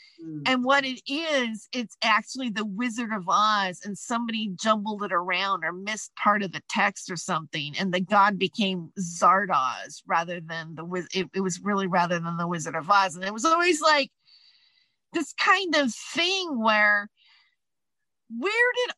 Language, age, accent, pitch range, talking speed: English, 40-59, American, 195-280 Hz, 165 wpm